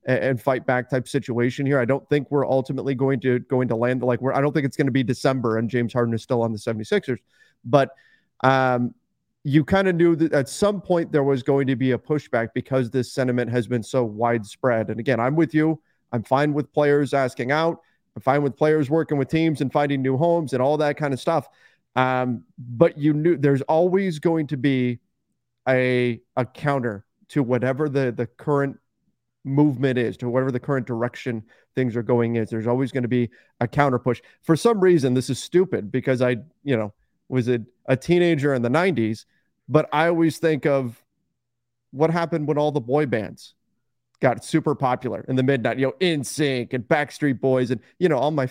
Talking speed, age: 210 wpm, 30-49